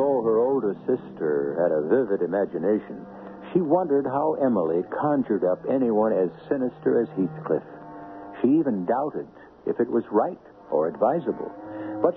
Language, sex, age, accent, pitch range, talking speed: English, male, 60-79, American, 105-165 Hz, 140 wpm